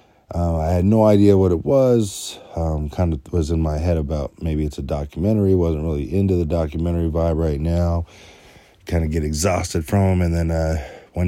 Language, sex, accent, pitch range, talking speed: English, male, American, 80-100 Hz, 200 wpm